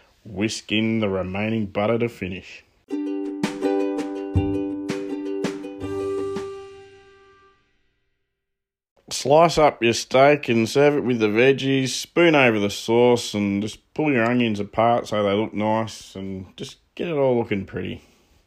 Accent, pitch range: Australian, 100-125 Hz